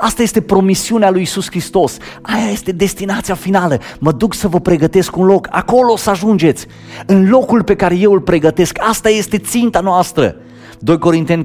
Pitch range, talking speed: 130-190 Hz, 180 wpm